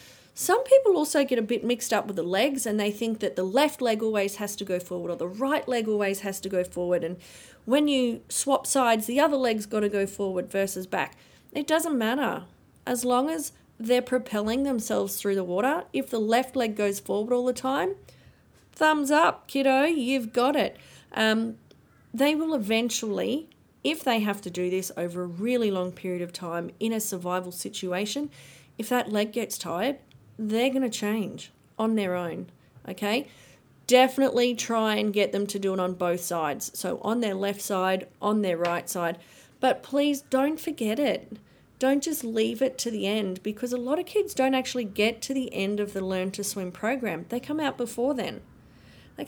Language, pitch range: English, 195-260 Hz